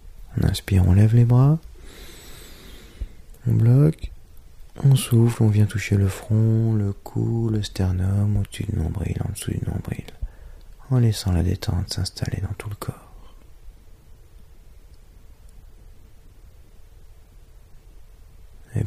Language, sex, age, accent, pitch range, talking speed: English, male, 40-59, French, 90-115 Hz, 115 wpm